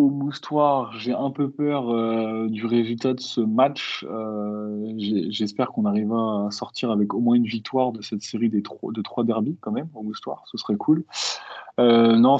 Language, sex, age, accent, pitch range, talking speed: French, male, 20-39, French, 105-130 Hz, 195 wpm